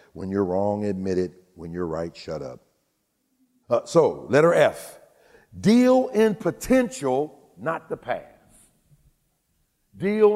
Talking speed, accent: 120 wpm, American